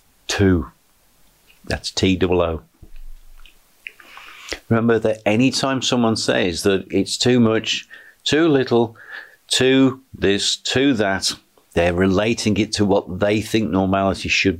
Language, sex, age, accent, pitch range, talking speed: English, male, 50-69, British, 90-110 Hz, 120 wpm